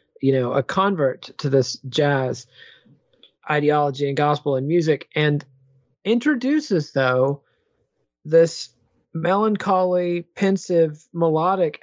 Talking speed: 95 wpm